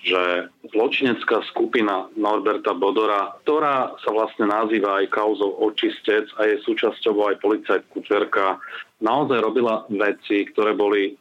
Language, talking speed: Slovak, 125 wpm